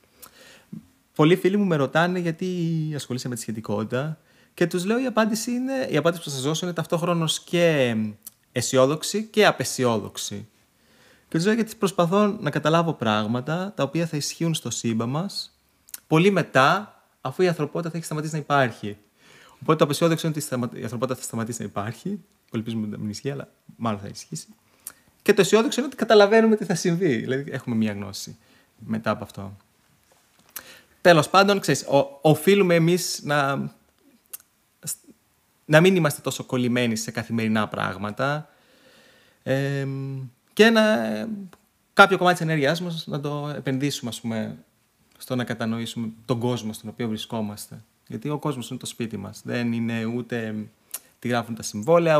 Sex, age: male, 30-49